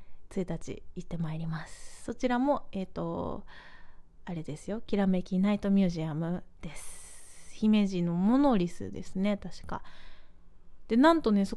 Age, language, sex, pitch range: 20-39, Japanese, female, 165-235 Hz